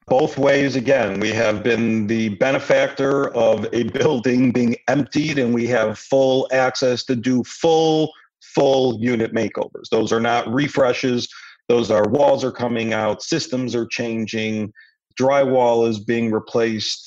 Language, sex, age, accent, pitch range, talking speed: English, male, 50-69, American, 115-135 Hz, 145 wpm